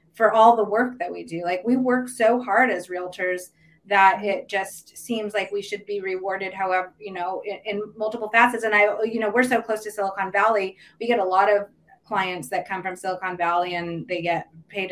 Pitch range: 180-240 Hz